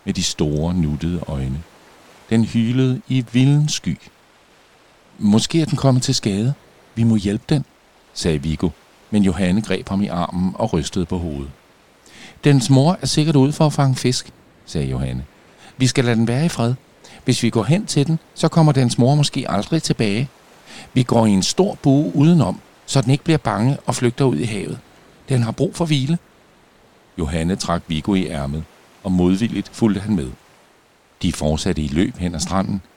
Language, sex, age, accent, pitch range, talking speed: Danish, male, 60-79, native, 90-135 Hz, 185 wpm